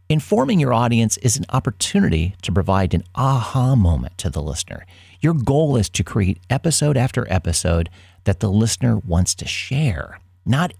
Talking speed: 160 wpm